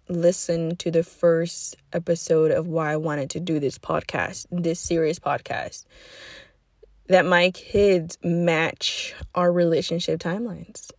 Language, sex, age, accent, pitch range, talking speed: English, female, 20-39, American, 165-230 Hz, 125 wpm